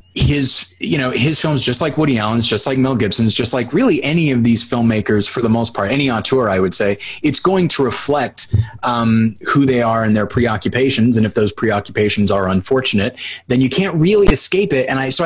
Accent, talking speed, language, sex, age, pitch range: American, 215 wpm, English, male, 20-39, 110-130 Hz